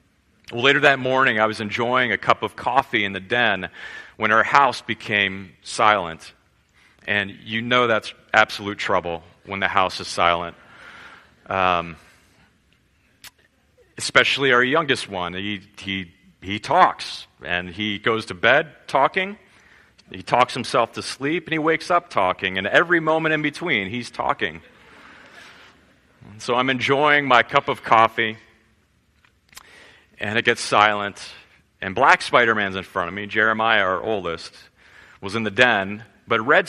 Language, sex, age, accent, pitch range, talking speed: English, male, 40-59, American, 95-135 Hz, 140 wpm